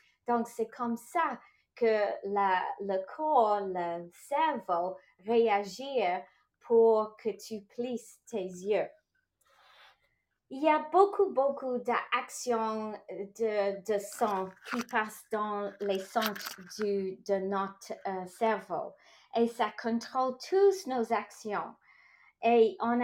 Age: 30-49